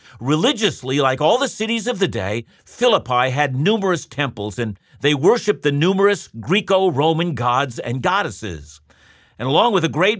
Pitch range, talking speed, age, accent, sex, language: 130-185 Hz, 155 wpm, 50-69, American, male, English